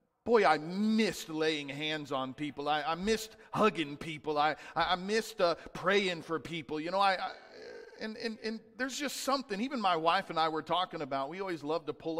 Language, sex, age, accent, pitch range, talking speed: English, male, 40-59, American, 170-240 Hz, 205 wpm